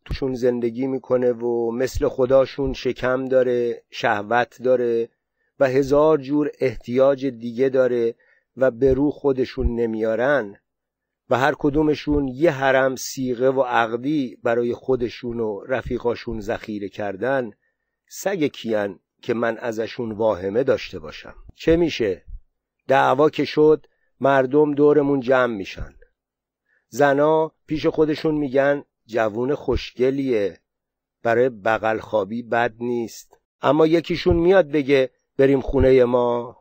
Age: 50-69